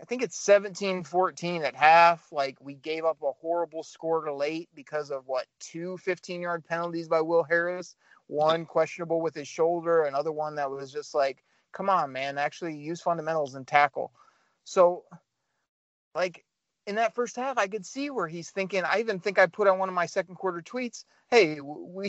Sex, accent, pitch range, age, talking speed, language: male, American, 150-185 Hz, 30-49, 185 wpm, English